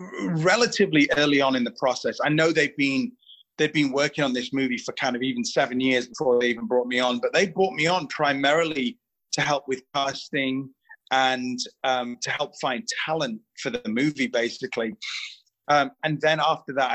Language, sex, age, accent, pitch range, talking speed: English, male, 30-49, British, 125-155 Hz, 190 wpm